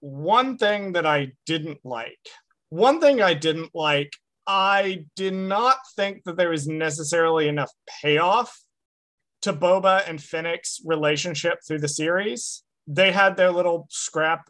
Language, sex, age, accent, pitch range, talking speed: English, male, 30-49, American, 140-185 Hz, 140 wpm